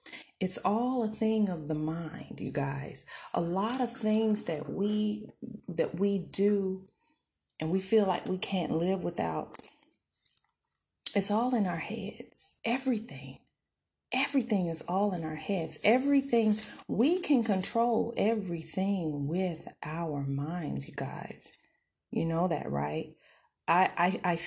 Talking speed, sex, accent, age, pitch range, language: 130 wpm, female, American, 40-59, 170-220 Hz, English